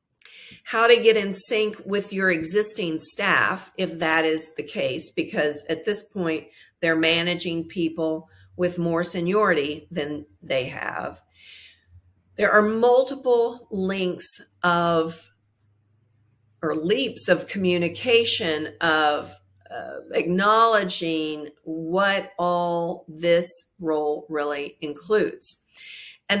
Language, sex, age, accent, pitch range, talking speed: English, female, 50-69, American, 155-195 Hz, 105 wpm